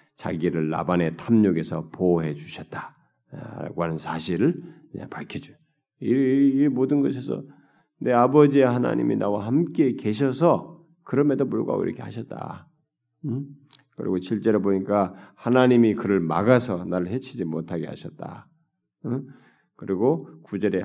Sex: male